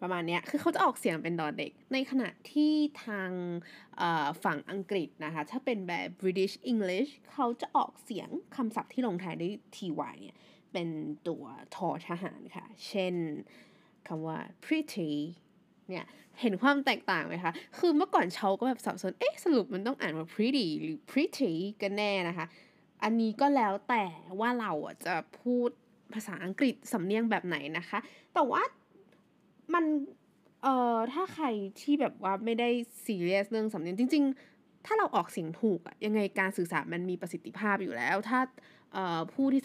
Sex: female